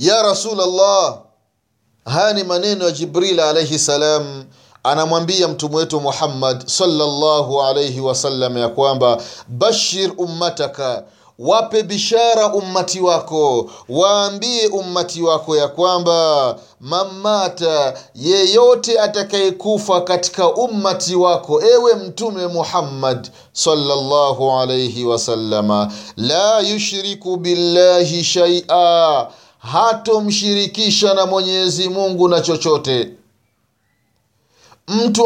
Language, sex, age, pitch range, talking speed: Swahili, male, 30-49, 135-205 Hz, 90 wpm